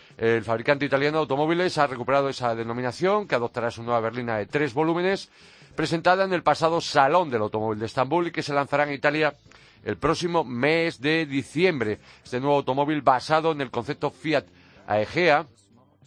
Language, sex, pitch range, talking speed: Spanish, male, 115-150 Hz, 170 wpm